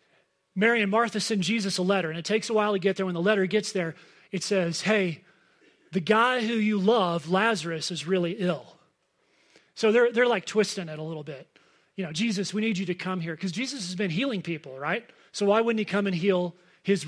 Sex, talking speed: male, 230 wpm